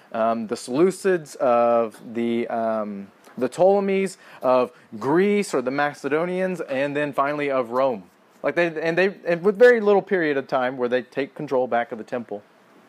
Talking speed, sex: 170 wpm, male